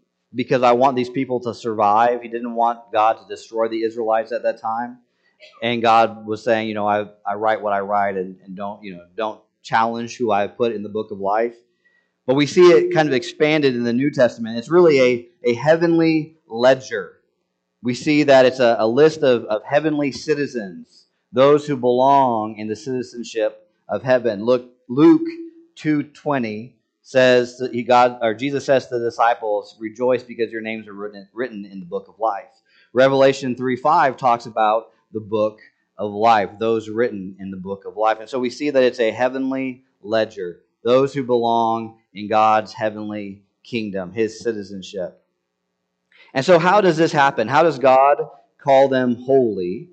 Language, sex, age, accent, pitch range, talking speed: English, male, 30-49, American, 110-135 Hz, 180 wpm